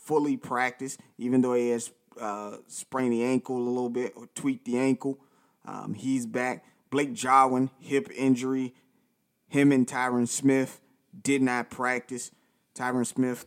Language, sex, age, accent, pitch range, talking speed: English, male, 30-49, American, 120-135 Hz, 145 wpm